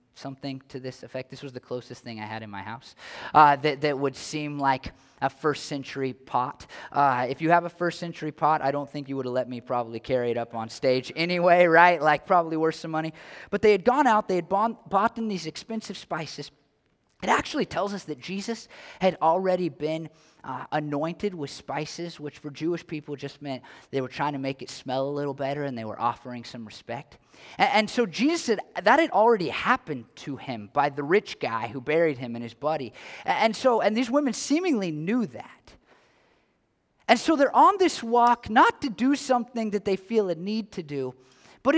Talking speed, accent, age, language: 215 wpm, American, 20-39, English